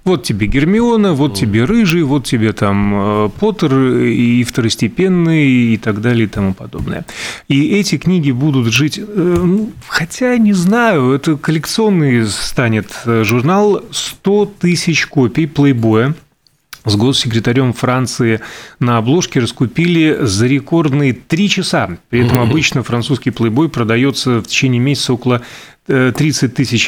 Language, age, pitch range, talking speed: Russian, 30-49, 110-150 Hz, 125 wpm